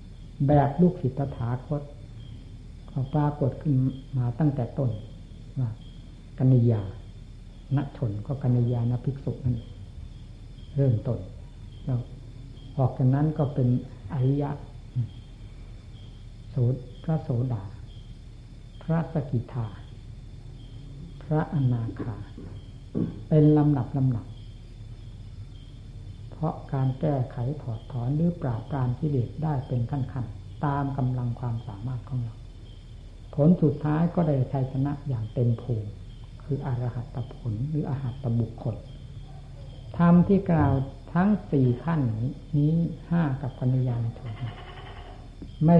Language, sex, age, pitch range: Thai, female, 60-79, 115-145 Hz